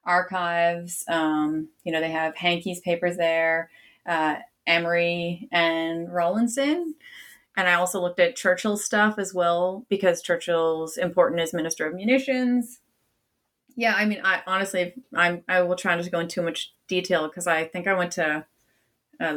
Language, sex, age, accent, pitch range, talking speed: English, female, 30-49, American, 170-210 Hz, 160 wpm